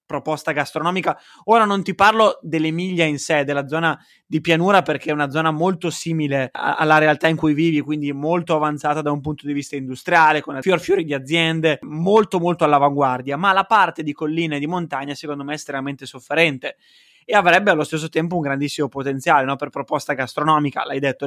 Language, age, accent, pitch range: Italian, 20-39, native, 145-175 Hz